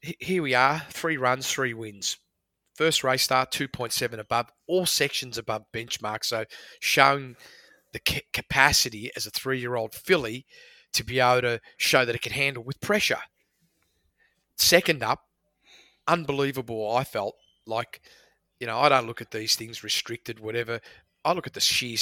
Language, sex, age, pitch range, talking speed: English, male, 30-49, 115-140 Hz, 155 wpm